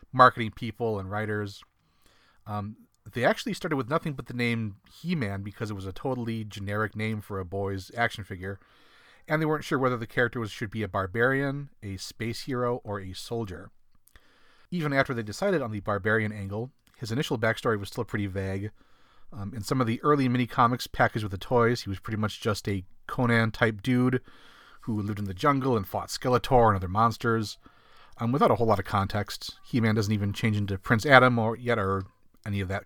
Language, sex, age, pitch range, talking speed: English, male, 30-49, 105-130 Hz, 195 wpm